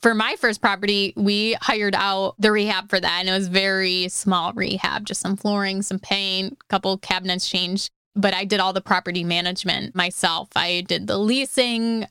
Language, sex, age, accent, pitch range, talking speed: English, female, 20-39, American, 185-210 Hz, 190 wpm